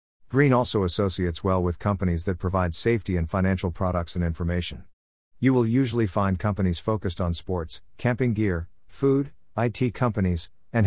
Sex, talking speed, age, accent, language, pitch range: male, 155 wpm, 50-69, American, English, 85-115 Hz